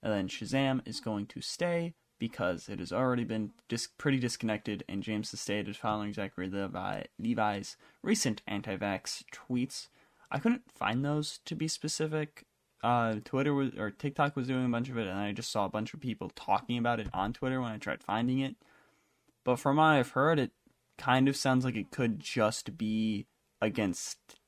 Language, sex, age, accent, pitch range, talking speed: English, male, 10-29, American, 105-130 Hz, 185 wpm